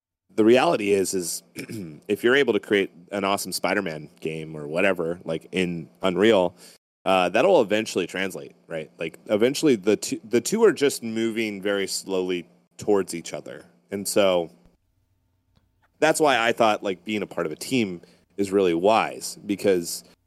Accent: American